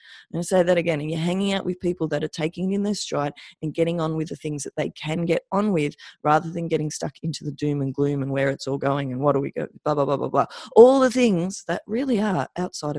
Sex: female